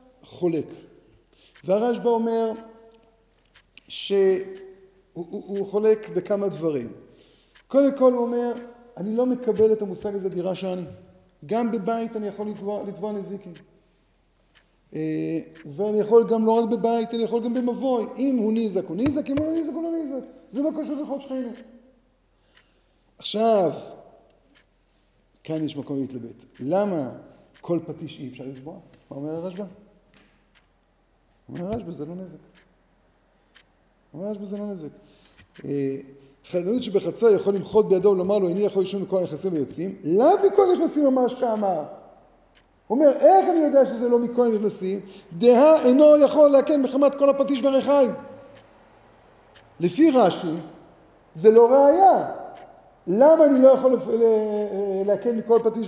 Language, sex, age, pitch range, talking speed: Hebrew, male, 50-69, 185-255 Hz, 115 wpm